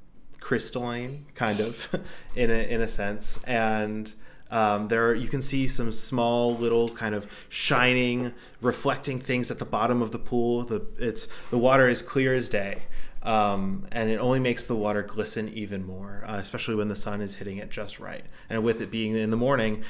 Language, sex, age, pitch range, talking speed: English, male, 20-39, 105-125 Hz, 195 wpm